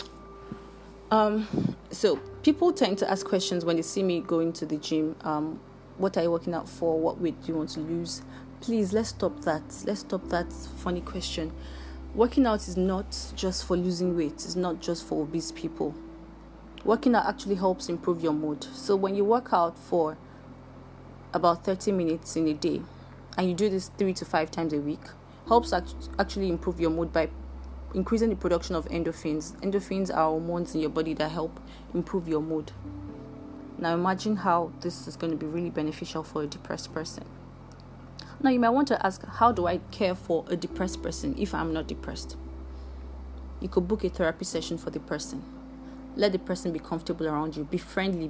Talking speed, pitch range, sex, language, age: 190 wpm, 150-190 Hz, female, English, 30-49